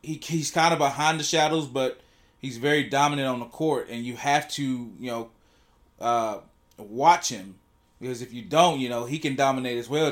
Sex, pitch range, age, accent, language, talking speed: male, 120-155 Hz, 20-39, American, English, 200 wpm